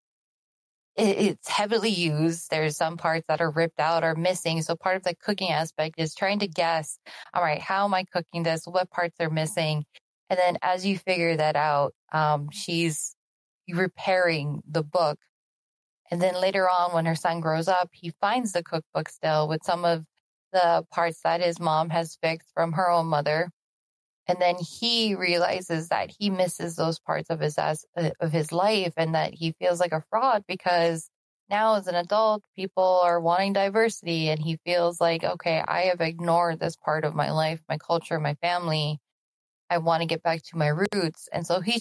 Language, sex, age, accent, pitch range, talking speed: English, female, 20-39, American, 155-180 Hz, 190 wpm